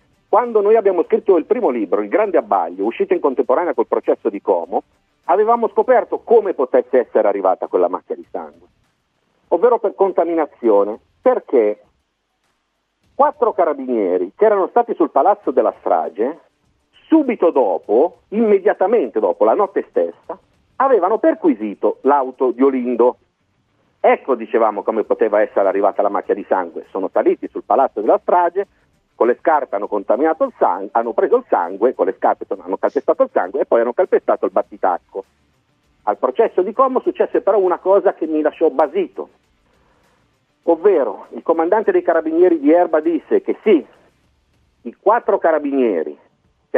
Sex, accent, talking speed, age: male, native, 150 wpm, 40-59